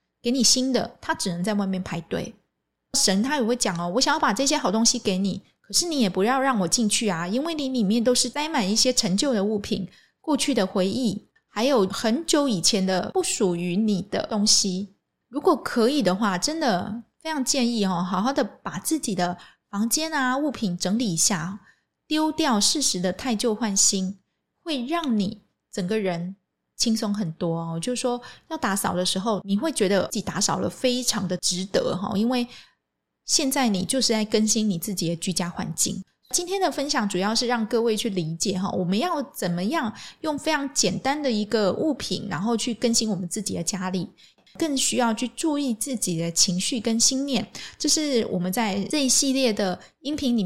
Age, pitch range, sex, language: 20-39, 195-260 Hz, female, Chinese